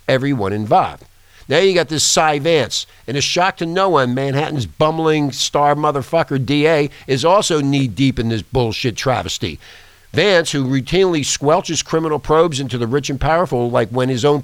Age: 50-69